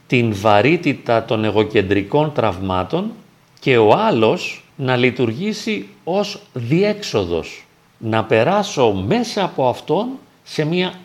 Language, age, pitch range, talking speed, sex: Greek, 40-59, 115-185 Hz, 105 wpm, male